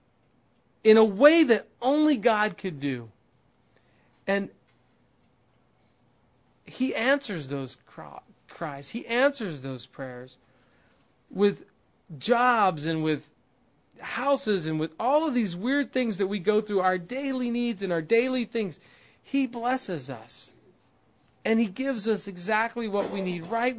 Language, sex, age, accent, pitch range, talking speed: English, male, 40-59, American, 160-235 Hz, 130 wpm